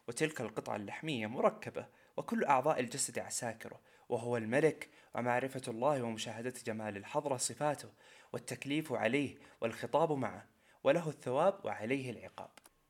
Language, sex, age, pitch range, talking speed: Arabic, male, 20-39, 115-160 Hz, 110 wpm